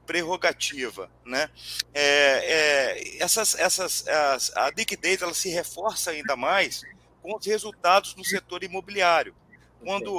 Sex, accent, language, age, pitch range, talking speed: male, Brazilian, Portuguese, 40-59, 155-190 Hz, 125 wpm